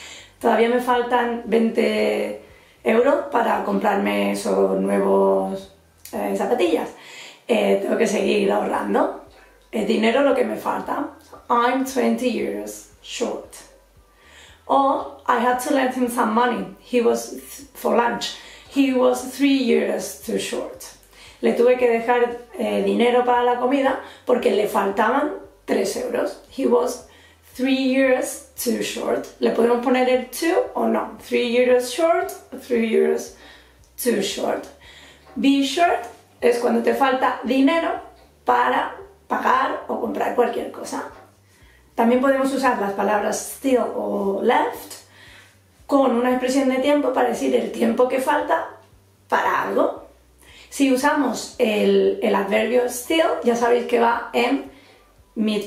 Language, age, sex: English, 30-49, female